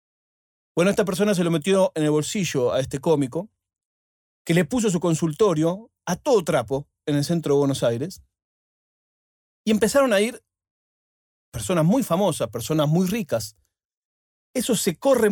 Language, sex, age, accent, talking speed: Spanish, male, 40-59, Argentinian, 155 wpm